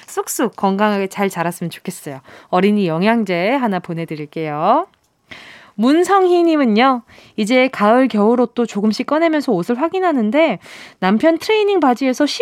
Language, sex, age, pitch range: Korean, female, 20-39, 195-285 Hz